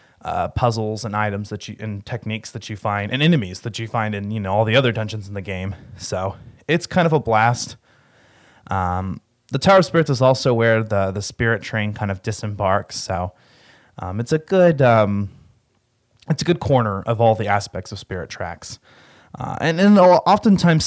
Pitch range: 100-125 Hz